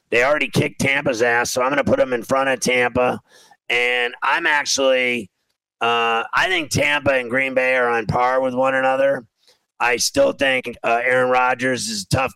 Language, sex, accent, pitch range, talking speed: English, male, American, 120-135 Hz, 200 wpm